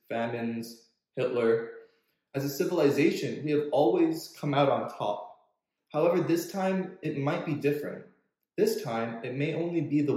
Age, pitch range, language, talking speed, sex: 20-39, 130-155 Hz, English, 155 wpm, male